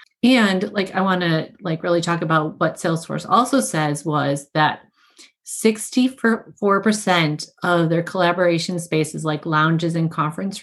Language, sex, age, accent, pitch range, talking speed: English, female, 30-49, American, 160-195 Hz, 135 wpm